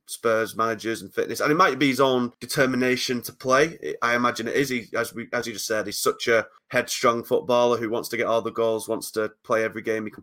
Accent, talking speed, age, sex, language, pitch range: British, 250 wpm, 20-39, male, English, 110-120 Hz